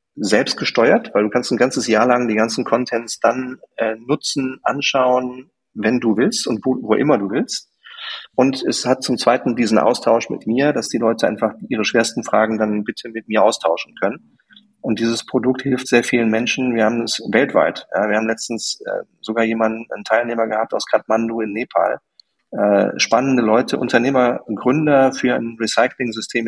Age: 40-59